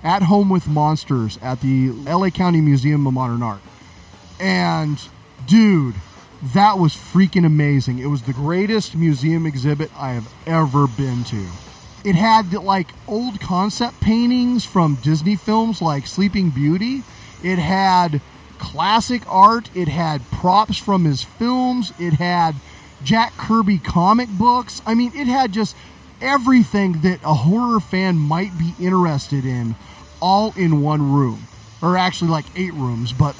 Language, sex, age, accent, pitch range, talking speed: English, male, 30-49, American, 140-200 Hz, 145 wpm